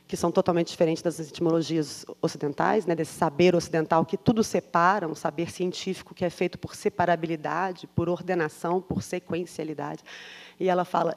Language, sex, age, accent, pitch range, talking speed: Portuguese, female, 20-39, Brazilian, 170-215 Hz, 155 wpm